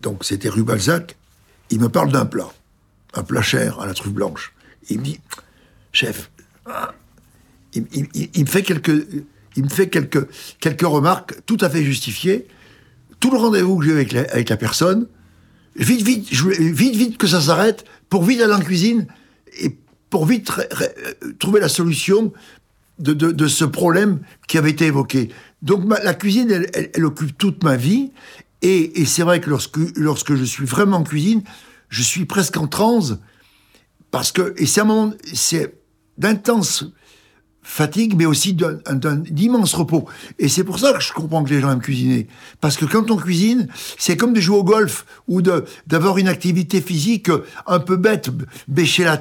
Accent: French